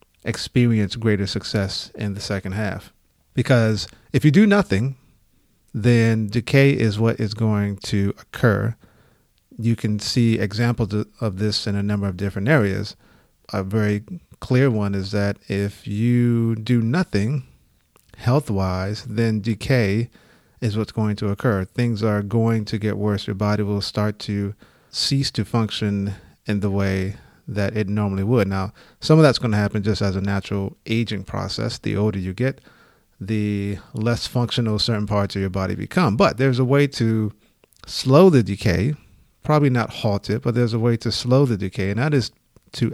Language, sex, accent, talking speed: English, male, American, 170 wpm